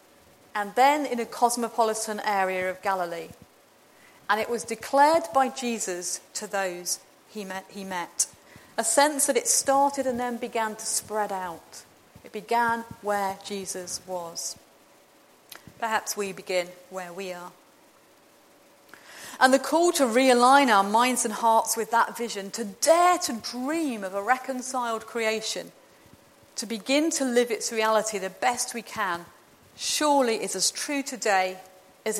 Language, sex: English, female